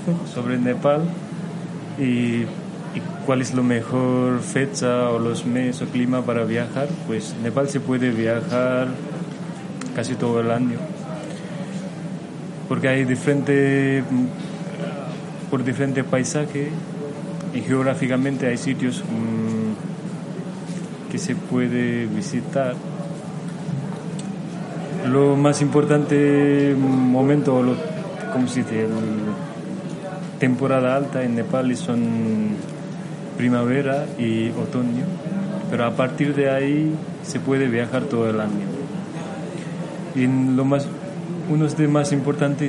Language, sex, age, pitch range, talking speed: Spanish, male, 20-39, 125-170 Hz, 105 wpm